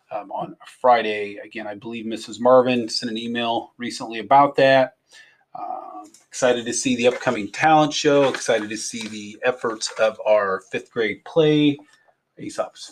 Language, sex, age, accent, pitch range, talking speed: English, male, 30-49, American, 115-155 Hz, 155 wpm